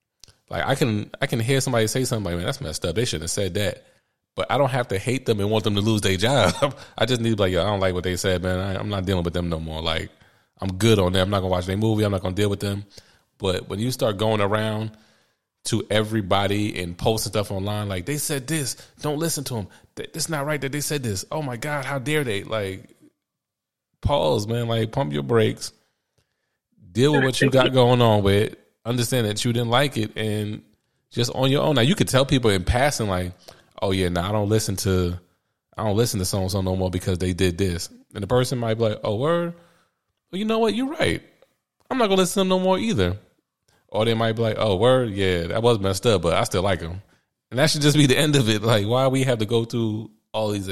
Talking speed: 260 wpm